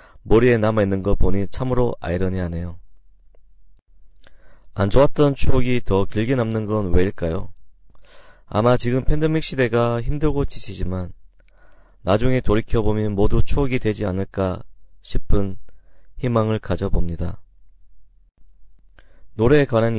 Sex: male